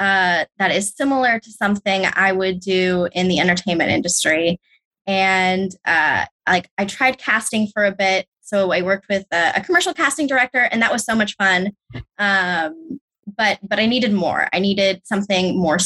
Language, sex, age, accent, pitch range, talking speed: English, female, 20-39, American, 190-225 Hz, 180 wpm